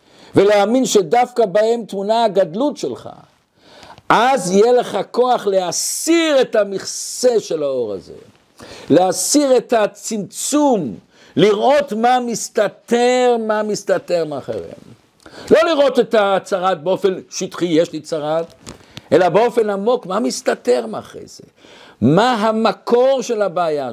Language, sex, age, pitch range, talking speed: Hebrew, male, 60-79, 190-250 Hz, 115 wpm